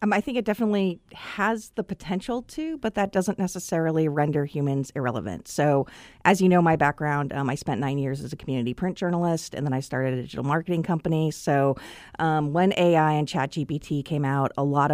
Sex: female